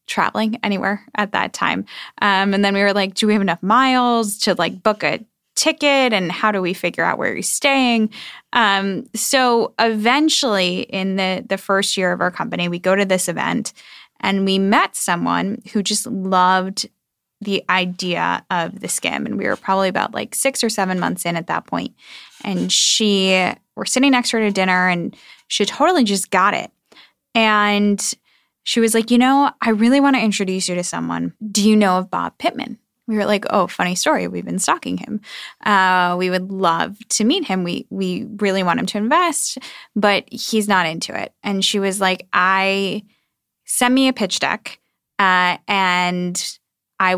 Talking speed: 190 wpm